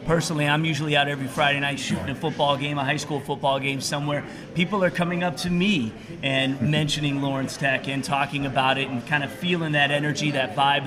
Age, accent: 30-49, American